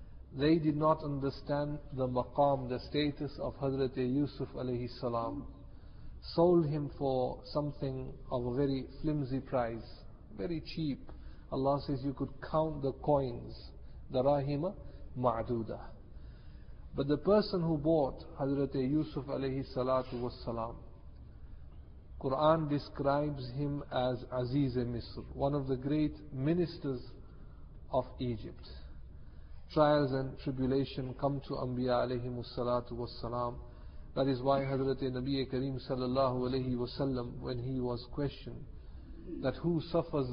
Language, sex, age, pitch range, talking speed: English, male, 50-69, 120-140 Hz, 125 wpm